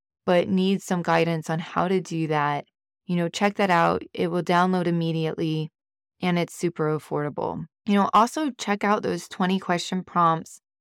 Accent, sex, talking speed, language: American, female, 170 wpm, English